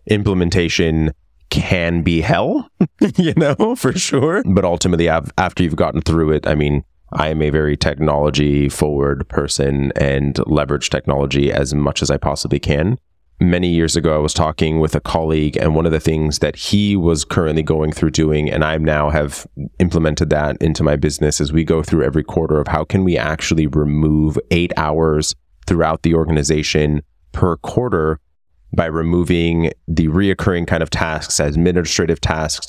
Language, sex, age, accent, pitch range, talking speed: English, male, 30-49, American, 75-85 Hz, 170 wpm